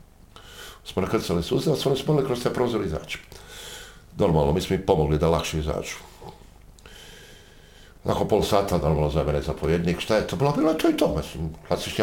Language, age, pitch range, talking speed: Croatian, 60-79, 85-130 Hz, 170 wpm